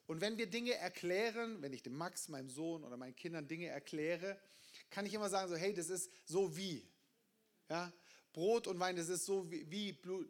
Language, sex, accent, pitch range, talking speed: German, male, German, 175-235 Hz, 205 wpm